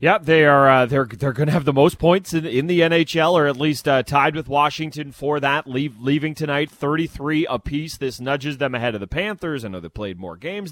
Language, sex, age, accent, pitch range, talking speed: English, male, 30-49, American, 140-175 Hz, 245 wpm